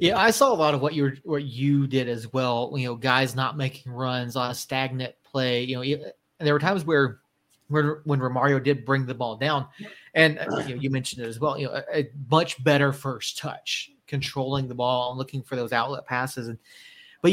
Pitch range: 125-150 Hz